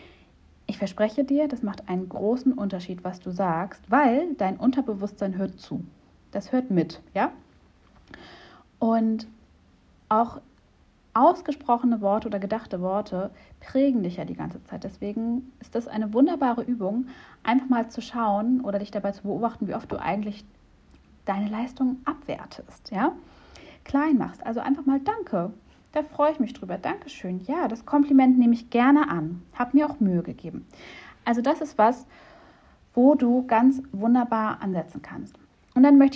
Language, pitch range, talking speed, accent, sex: German, 195-255 Hz, 155 wpm, German, female